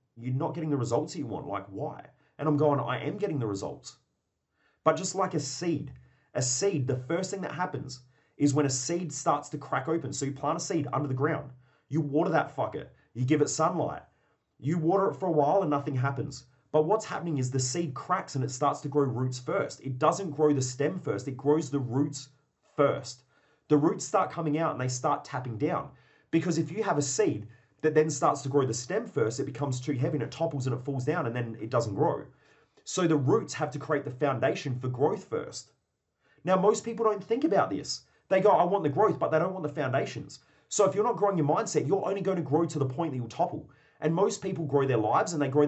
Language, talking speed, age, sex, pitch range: English, 240 wpm, 30-49, male, 140-165 Hz